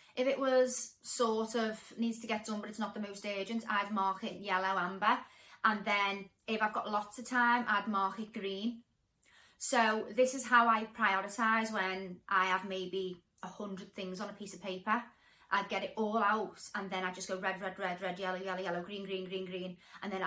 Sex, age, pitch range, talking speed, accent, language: female, 30-49, 200-245 Hz, 220 wpm, British, English